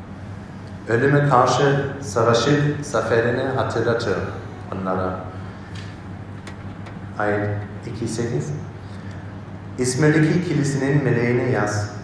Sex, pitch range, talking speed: male, 100-125 Hz, 60 wpm